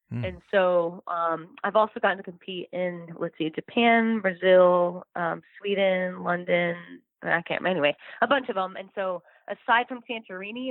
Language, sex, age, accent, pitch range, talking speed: English, female, 20-39, American, 175-205 Hz, 155 wpm